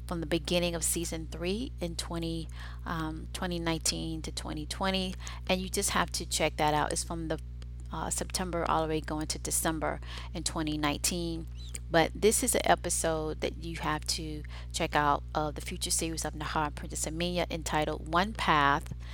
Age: 30-49